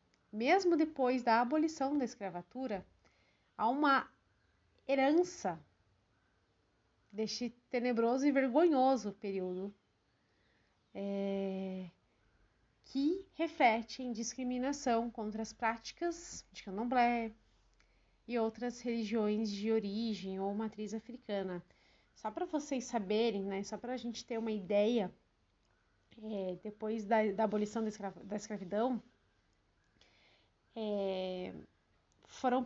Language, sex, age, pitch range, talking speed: Portuguese, female, 30-49, 195-245 Hz, 95 wpm